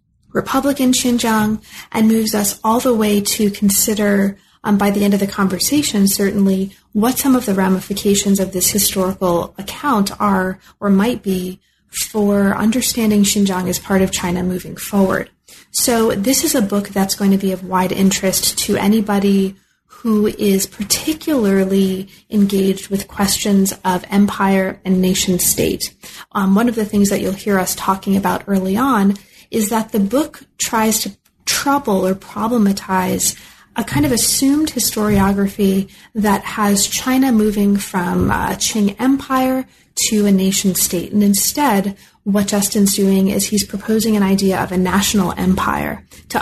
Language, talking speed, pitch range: English, 150 wpm, 190-215 Hz